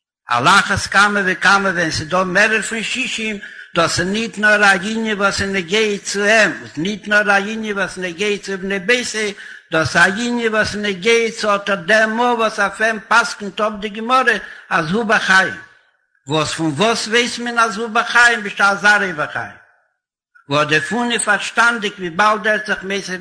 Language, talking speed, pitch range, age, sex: Hebrew, 115 wpm, 190-220 Hz, 60-79, male